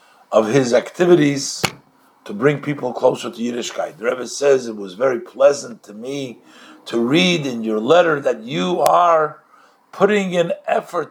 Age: 50-69